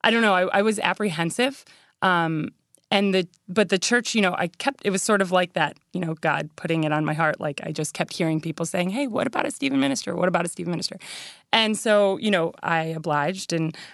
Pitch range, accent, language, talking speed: 160-190 Hz, American, English, 235 wpm